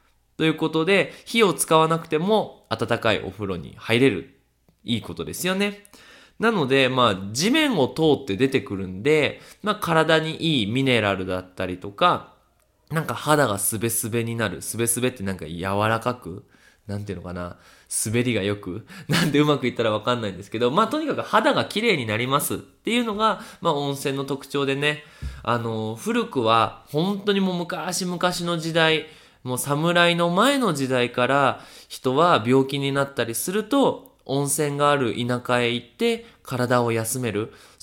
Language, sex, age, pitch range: Japanese, male, 20-39, 115-165 Hz